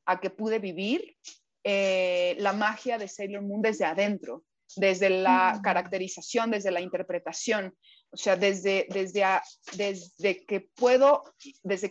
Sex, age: female, 30-49